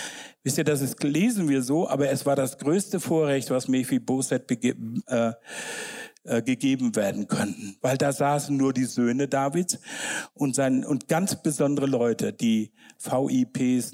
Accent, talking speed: German, 160 wpm